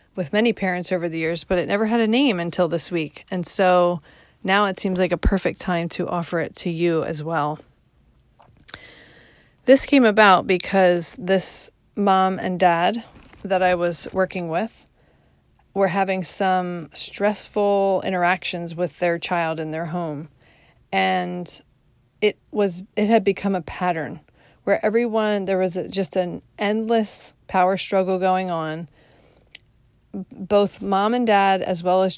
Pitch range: 170-205 Hz